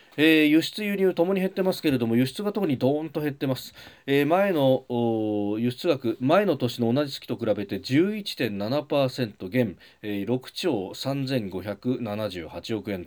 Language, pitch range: Japanese, 105-155 Hz